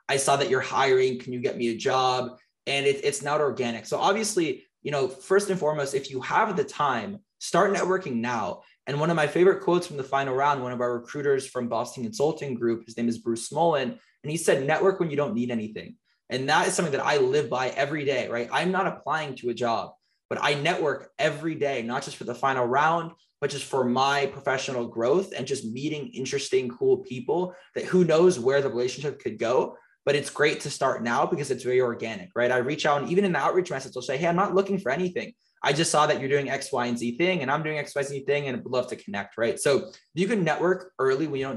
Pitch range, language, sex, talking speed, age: 125-180 Hz, English, male, 250 wpm, 20-39